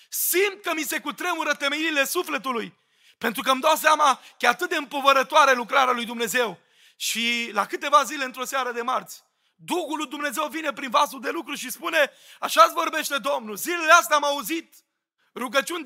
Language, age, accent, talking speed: Romanian, 30-49, native, 175 wpm